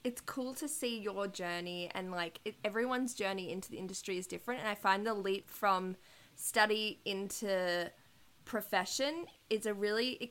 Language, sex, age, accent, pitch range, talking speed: English, female, 10-29, Australian, 180-230 Hz, 165 wpm